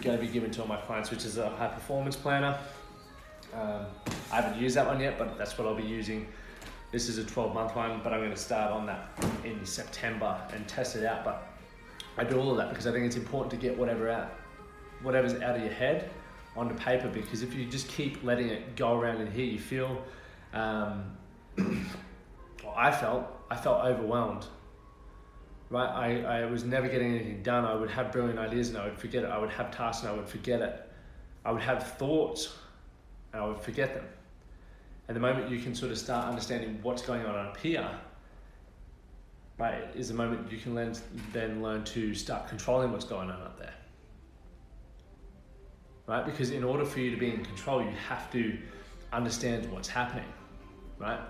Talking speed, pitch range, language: 195 wpm, 110-125 Hz, English